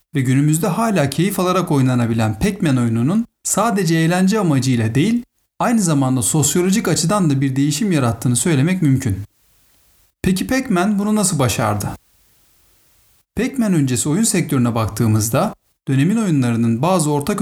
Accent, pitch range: native, 125-190 Hz